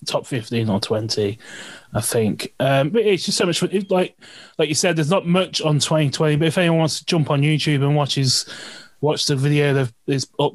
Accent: British